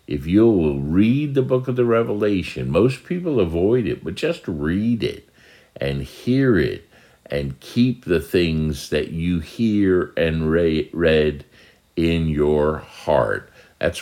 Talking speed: 135 wpm